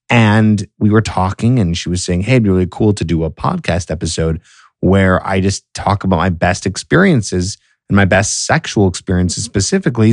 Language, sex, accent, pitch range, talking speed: English, male, American, 95-125 Hz, 190 wpm